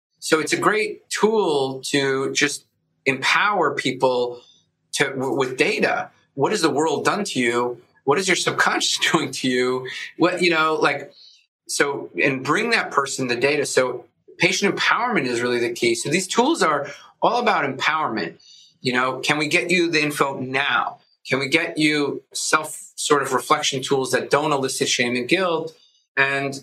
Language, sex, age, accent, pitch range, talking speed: English, male, 30-49, American, 125-170 Hz, 170 wpm